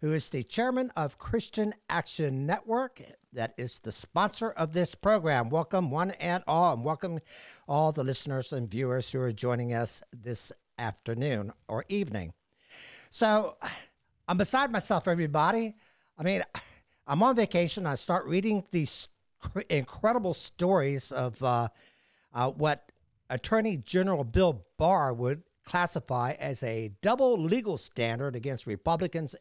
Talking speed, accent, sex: 135 wpm, American, male